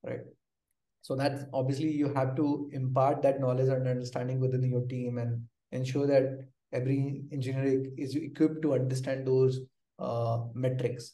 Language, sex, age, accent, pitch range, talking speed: English, male, 20-39, Indian, 135-170 Hz, 145 wpm